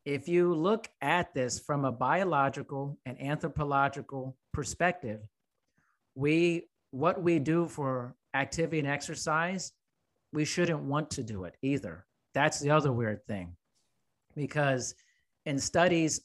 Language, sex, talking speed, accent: English, male, 125 wpm, American